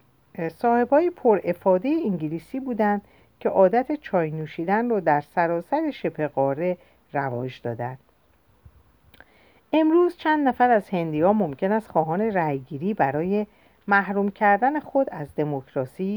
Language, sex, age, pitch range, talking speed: Persian, female, 50-69, 150-215 Hz, 115 wpm